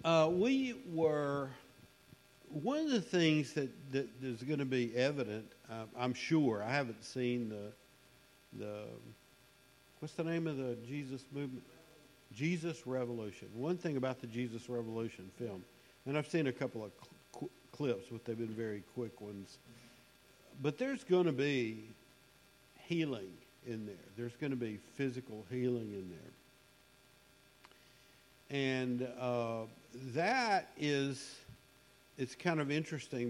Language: English